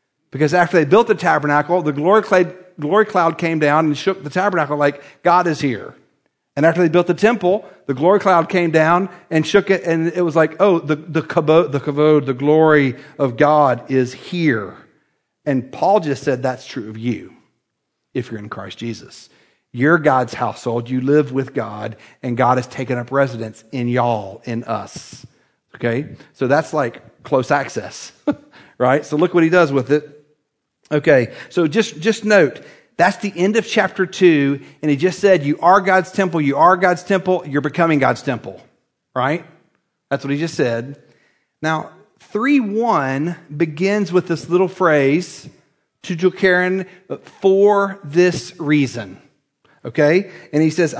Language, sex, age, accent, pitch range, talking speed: English, male, 50-69, American, 140-180 Hz, 170 wpm